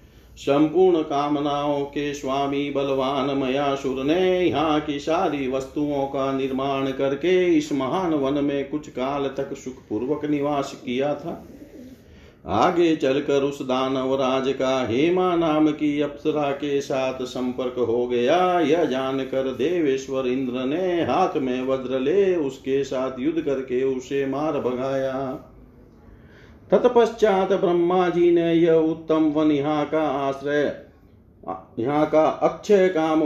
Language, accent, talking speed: Hindi, native, 125 wpm